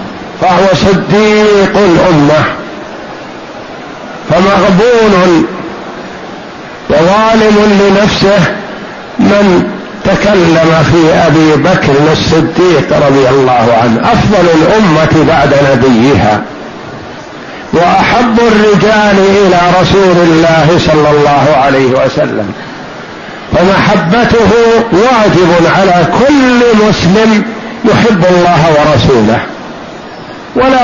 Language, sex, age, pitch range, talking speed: Arabic, male, 60-79, 175-215 Hz, 70 wpm